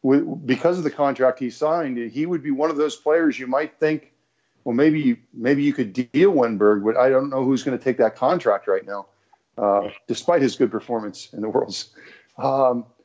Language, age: English, 50-69